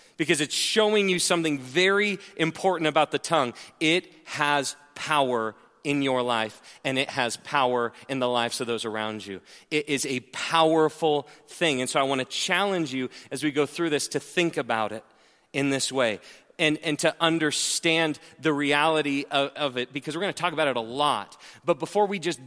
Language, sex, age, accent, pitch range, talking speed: English, male, 30-49, American, 145-185 Hz, 195 wpm